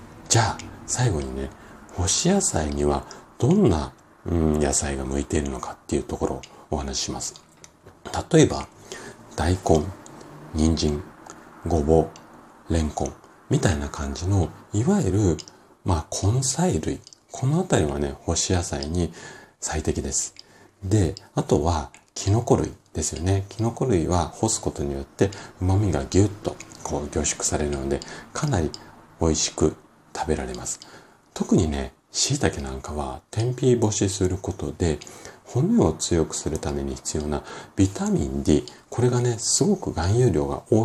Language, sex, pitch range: Japanese, male, 75-105 Hz